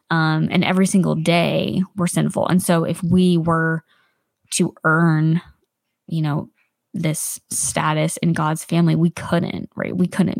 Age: 20-39